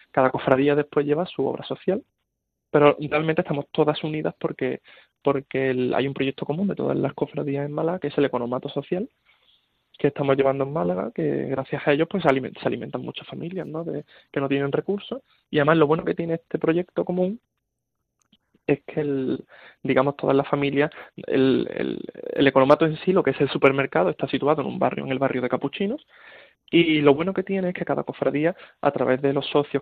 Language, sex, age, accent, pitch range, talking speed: Spanish, male, 20-39, Spanish, 135-160 Hz, 205 wpm